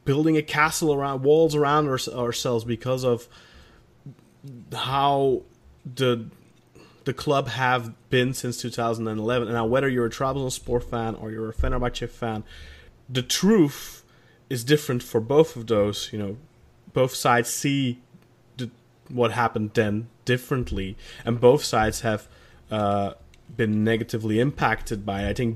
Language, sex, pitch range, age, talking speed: English, male, 110-125 Hz, 20-39, 140 wpm